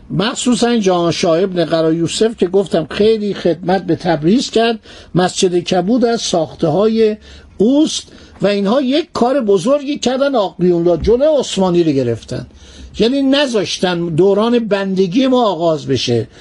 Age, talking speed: 60-79, 130 wpm